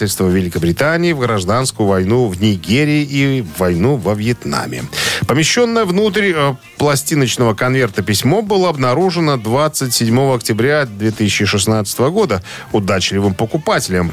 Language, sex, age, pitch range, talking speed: Russian, male, 40-59, 105-145 Hz, 105 wpm